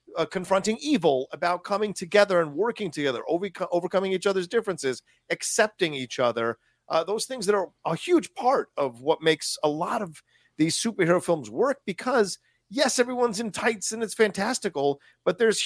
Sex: male